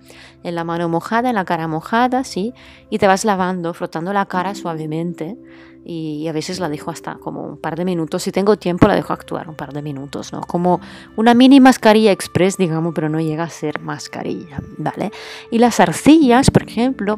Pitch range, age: 160-205 Hz, 20-39